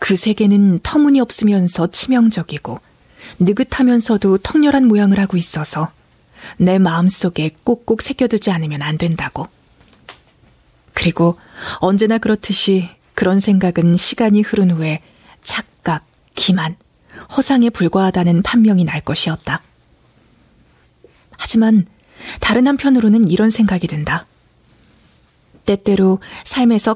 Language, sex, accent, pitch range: Korean, female, native, 170-220 Hz